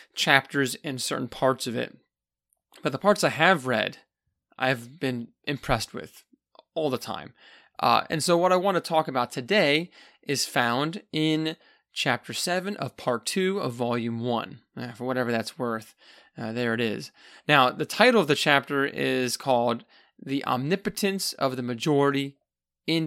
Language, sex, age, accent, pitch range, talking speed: English, male, 30-49, American, 125-160 Hz, 160 wpm